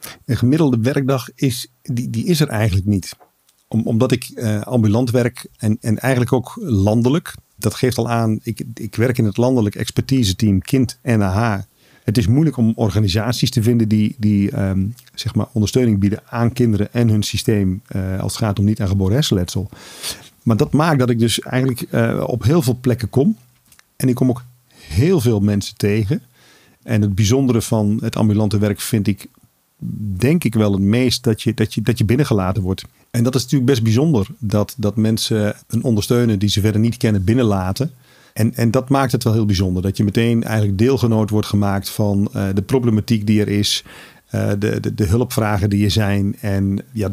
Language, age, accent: Dutch, 50-69, Dutch